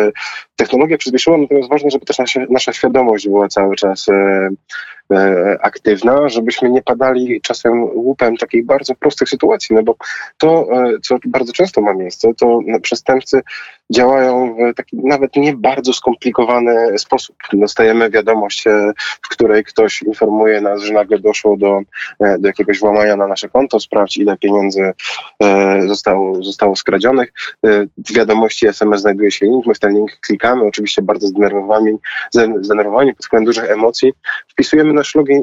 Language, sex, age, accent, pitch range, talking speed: Polish, male, 20-39, native, 105-130 Hz, 145 wpm